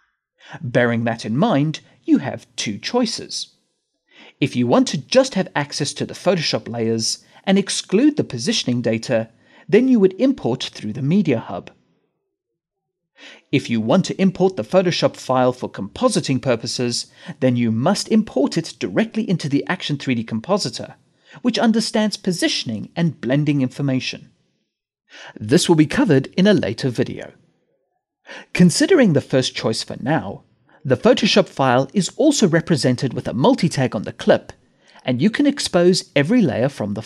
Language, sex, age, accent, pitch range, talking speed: English, male, 40-59, British, 130-200 Hz, 150 wpm